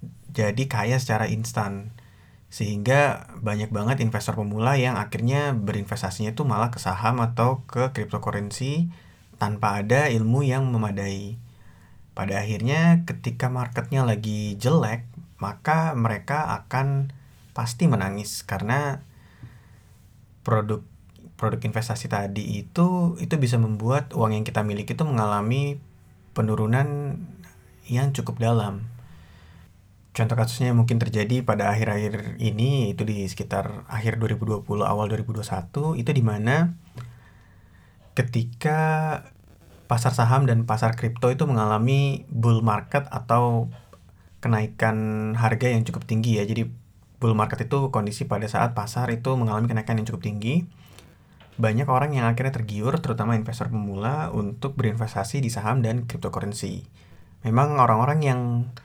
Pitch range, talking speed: 105-130 Hz, 120 wpm